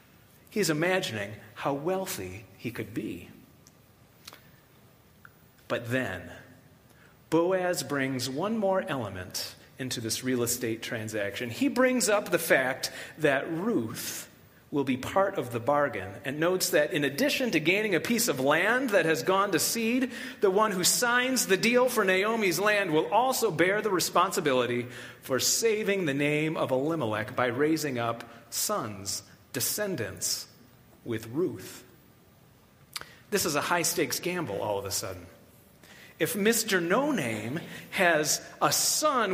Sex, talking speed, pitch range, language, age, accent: male, 135 wpm, 130-215 Hz, English, 30-49, American